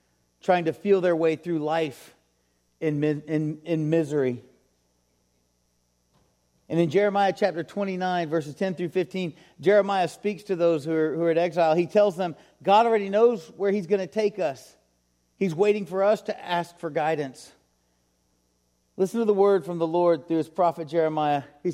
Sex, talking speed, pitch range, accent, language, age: male, 170 wpm, 150-205 Hz, American, English, 40-59